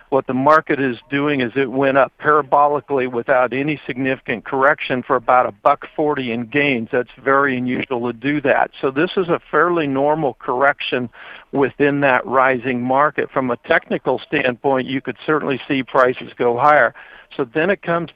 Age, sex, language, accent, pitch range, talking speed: 60-79, male, English, American, 125-145 Hz, 175 wpm